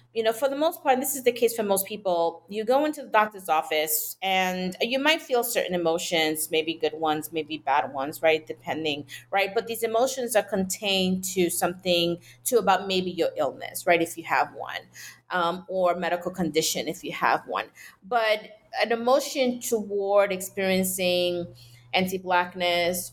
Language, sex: English, female